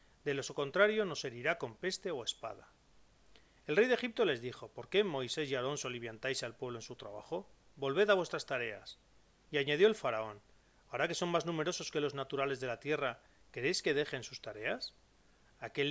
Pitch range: 125-175 Hz